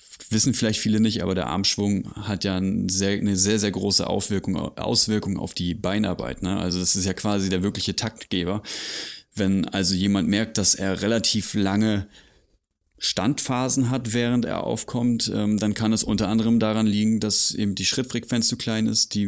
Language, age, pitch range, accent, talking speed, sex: German, 30-49, 95-110 Hz, German, 170 wpm, male